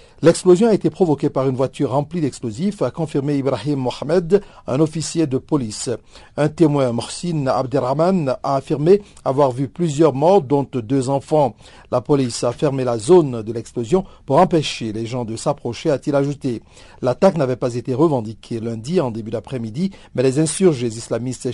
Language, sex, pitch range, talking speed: French, male, 120-160 Hz, 165 wpm